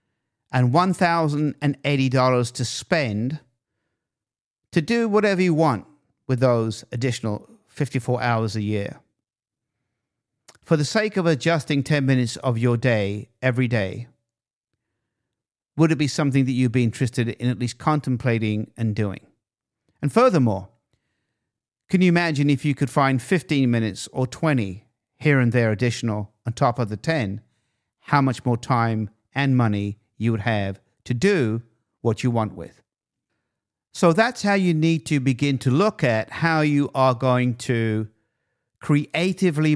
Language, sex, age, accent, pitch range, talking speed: English, male, 50-69, British, 115-145 Hz, 145 wpm